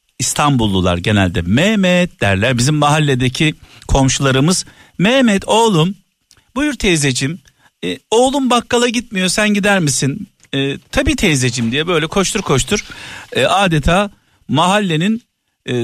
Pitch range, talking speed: 120-180 Hz, 110 wpm